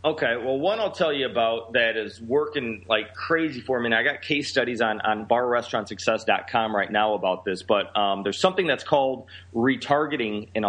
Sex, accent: male, American